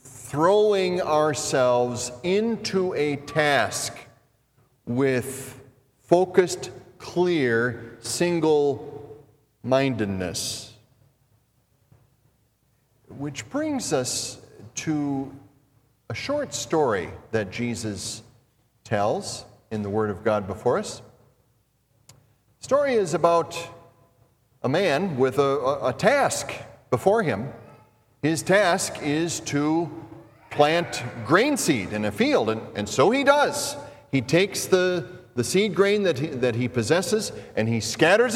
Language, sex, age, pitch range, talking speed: English, male, 40-59, 120-170 Hz, 105 wpm